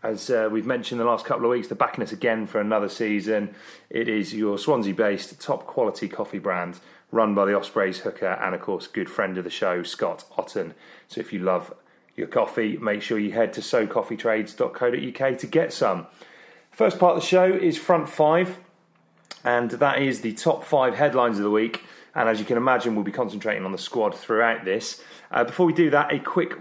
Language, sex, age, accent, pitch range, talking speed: English, male, 30-49, British, 110-135 Hz, 205 wpm